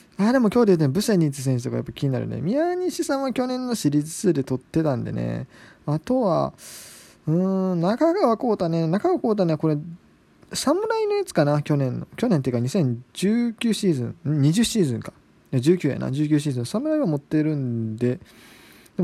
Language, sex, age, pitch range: Japanese, male, 20-39, 140-210 Hz